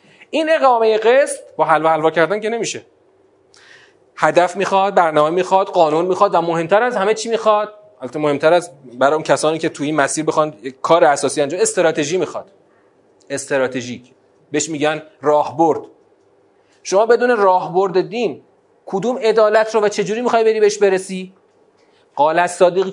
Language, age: Persian, 30-49